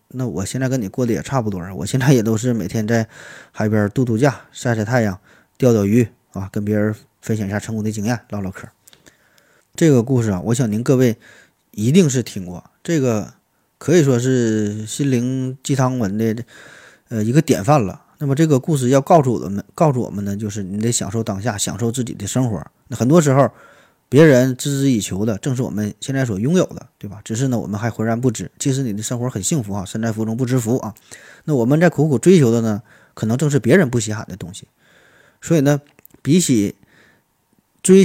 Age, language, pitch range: 20-39, Chinese, 110-135 Hz